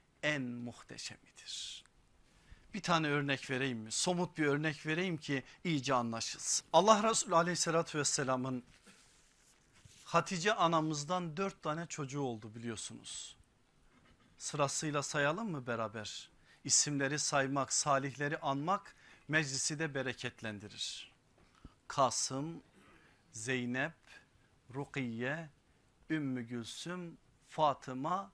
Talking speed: 90 wpm